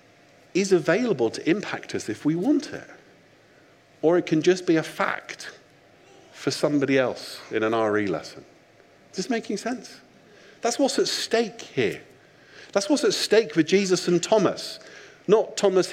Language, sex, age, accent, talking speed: English, male, 50-69, British, 160 wpm